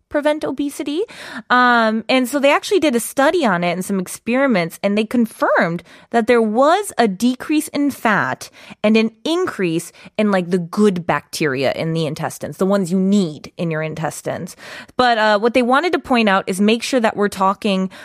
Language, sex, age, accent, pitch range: Korean, female, 20-39, American, 185-235 Hz